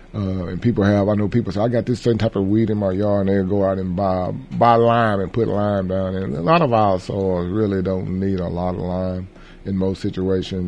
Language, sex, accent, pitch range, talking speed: English, male, American, 90-105 Hz, 260 wpm